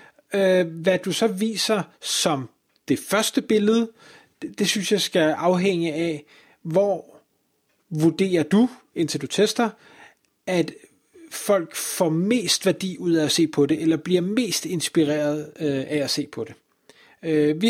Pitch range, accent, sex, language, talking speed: 160-205 Hz, native, male, Danish, 140 wpm